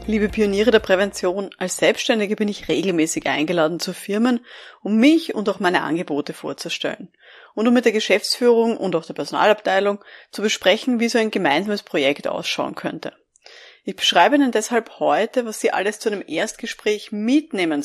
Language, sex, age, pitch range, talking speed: German, female, 30-49, 185-245 Hz, 165 wpm